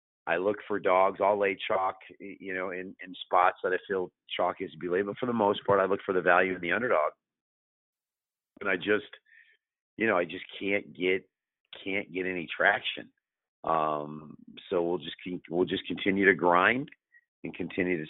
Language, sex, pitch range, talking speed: English, male, 90-100 Hz, 195 wpm